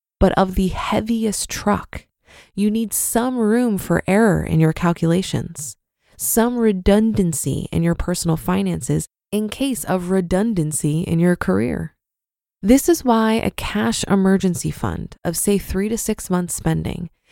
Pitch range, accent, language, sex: 170-220 Hz, American, English, female